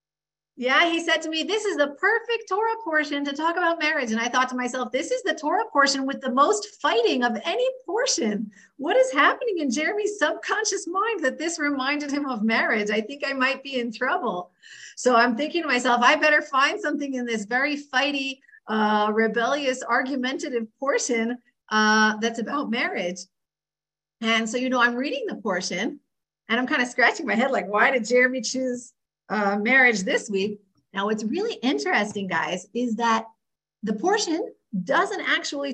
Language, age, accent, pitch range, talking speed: English, 40-59, American, 215-300 Hz, 180 wpm